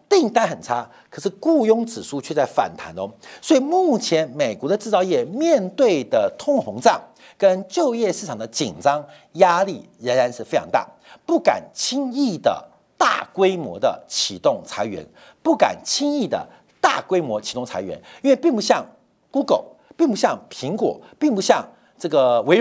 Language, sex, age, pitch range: Chinese, male, 50-69, 170-275 Hz